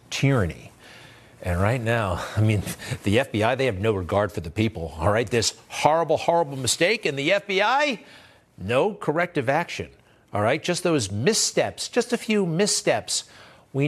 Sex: male